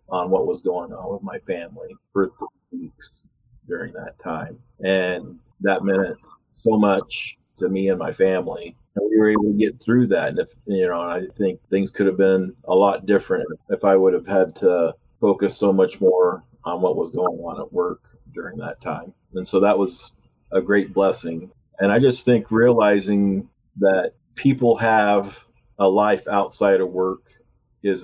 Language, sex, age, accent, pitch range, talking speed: English, male, 40-59, American, 95-135 Hz, 185 wpm